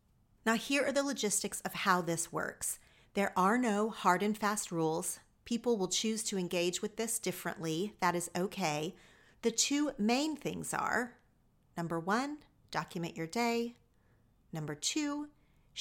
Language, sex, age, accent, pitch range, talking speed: English, female, 40-59, American, 170-225 Hz, 150 wpm